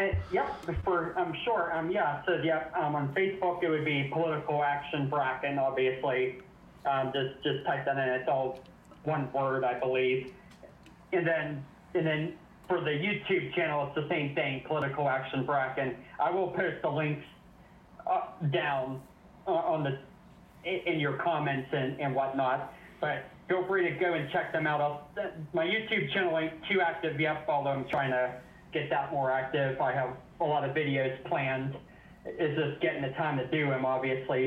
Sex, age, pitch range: male, 40-59, 130-165 Hz